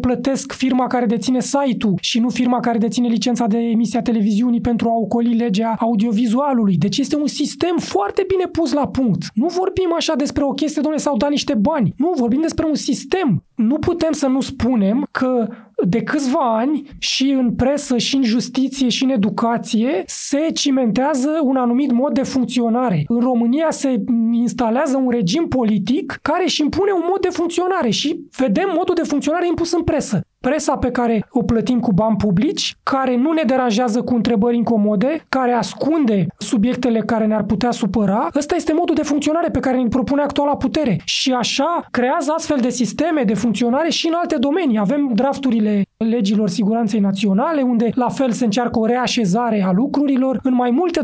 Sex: male